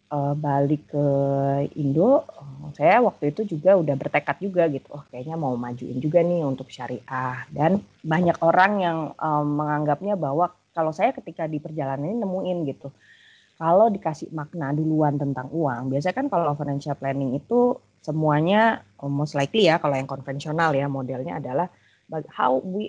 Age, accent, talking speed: 20-39, native, 150 wpm